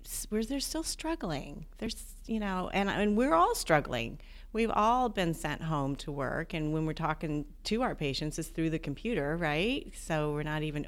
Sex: female